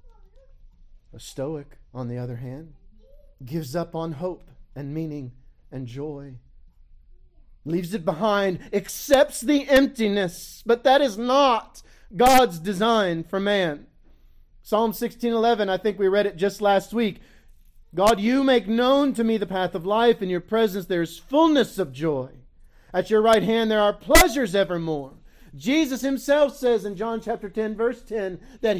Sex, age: male, 40-59